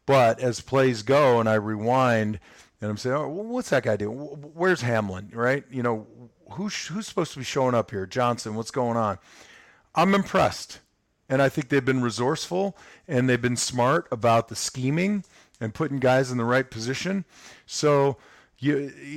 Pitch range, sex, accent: 110-135 Hz, male, American